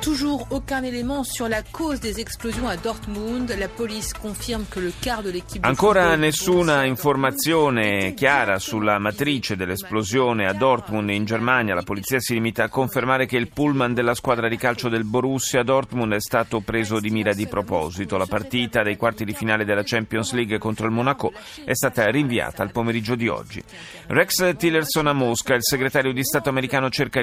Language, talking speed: Italian, 140 wpm